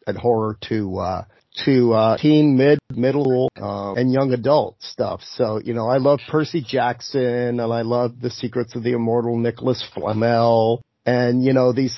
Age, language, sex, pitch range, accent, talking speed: 40-59, English, male, 110-130 Hz, American, 175 wpm